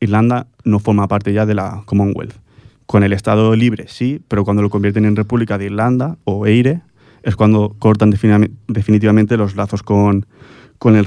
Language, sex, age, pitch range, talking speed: Spanish, male, 20-39, 105-120 Hz, 175 wpm